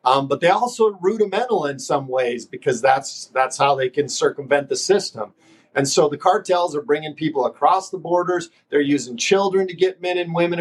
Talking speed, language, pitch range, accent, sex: 200 wpm, English, 145-175 Hz, American, male